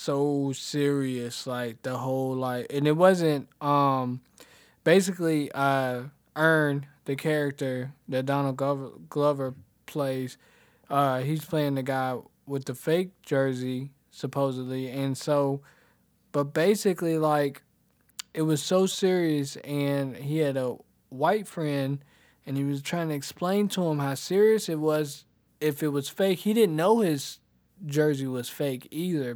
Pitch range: 135-155 Hz